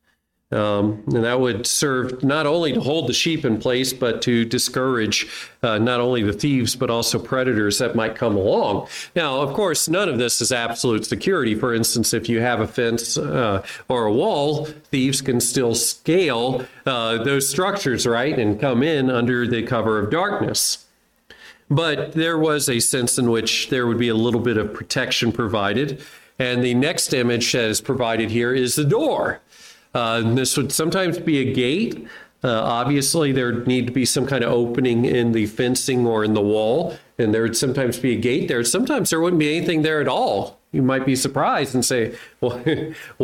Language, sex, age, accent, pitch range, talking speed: English, male, 40-59, American, 115-140 Hz, 190 wpm